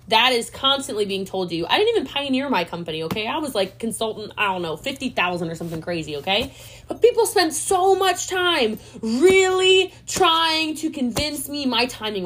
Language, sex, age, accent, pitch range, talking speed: English, female, 20-39, American, 195-315 Hz, 190 wpm